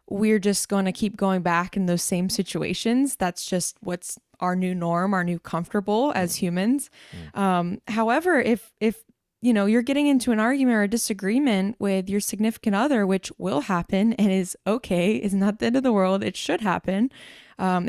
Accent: American